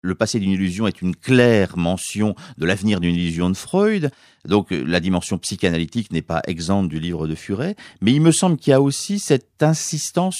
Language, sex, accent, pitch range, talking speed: French, male, French, 100-145 Hz, 200 wpm